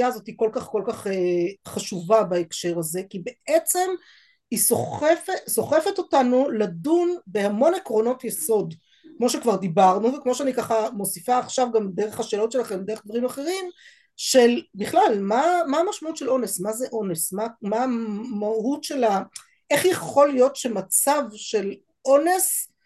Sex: female